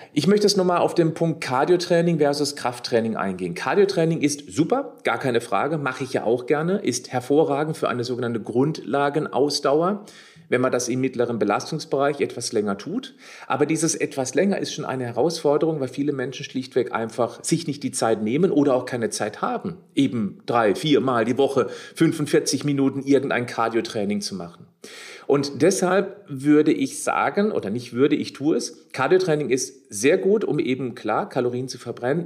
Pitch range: 125-165 Hz